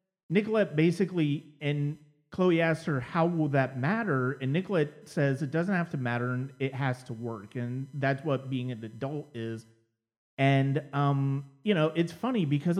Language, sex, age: English, male, 30-49